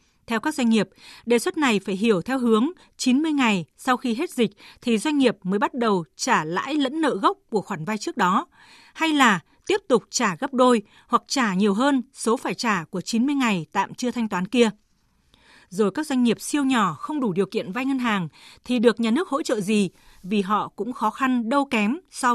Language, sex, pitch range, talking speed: Vietnamese, female, 205-270 Hz, 225 wpm